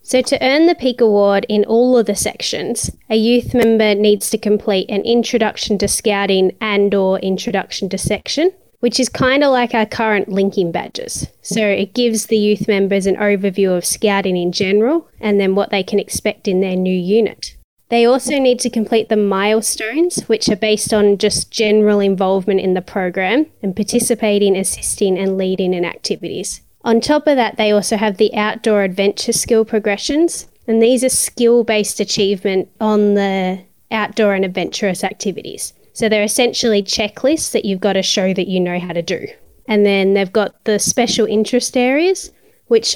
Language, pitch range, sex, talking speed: English, 195-230 Hz, female, 180 wpm